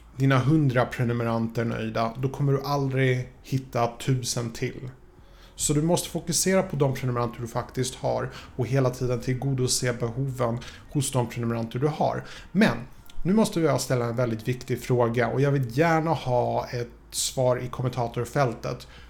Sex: male